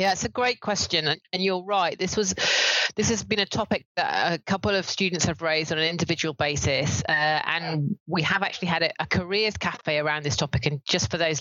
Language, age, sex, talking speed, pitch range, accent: English, 30-49, female, 225 wpm, 155-190 Hz, British